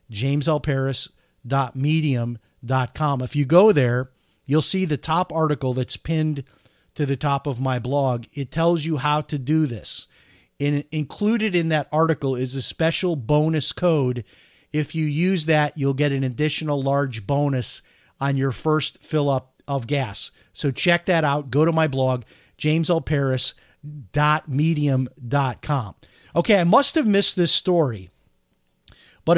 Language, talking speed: English, 140 wpm